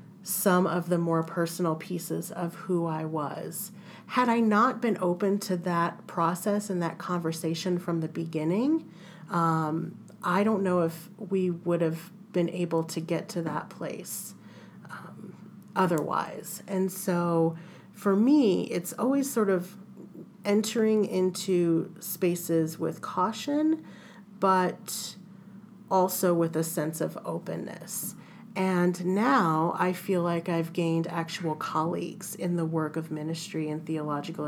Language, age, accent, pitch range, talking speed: English, 40-59, American, 165-195 Hz, 135 wpm